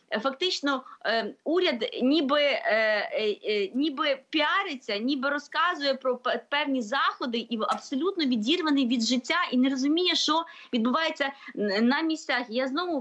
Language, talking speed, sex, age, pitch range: Ukrainian, 110 wpm, female, 20-39, 225-290 Hz